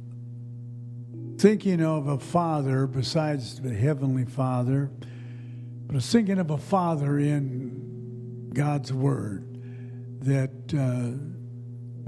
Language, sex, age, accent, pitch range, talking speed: English, male, 60-79, American, 125-160 Hz, 100 wpm